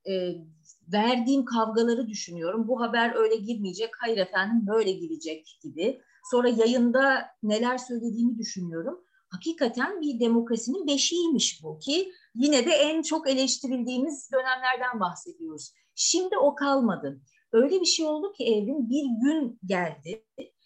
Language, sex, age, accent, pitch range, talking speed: Turkish, female, 30-49, native, 205-260 Hz, 120 wpm